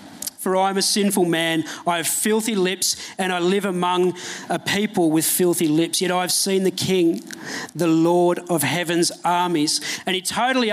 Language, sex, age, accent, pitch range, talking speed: English, male, 40-59, Australian, 180-210 Hz, 175 wpm